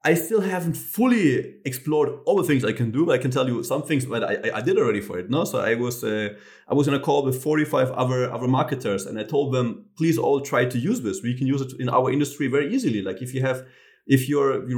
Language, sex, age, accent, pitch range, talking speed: English, male, 30-49, German, 115-140 Hz, 270 wpm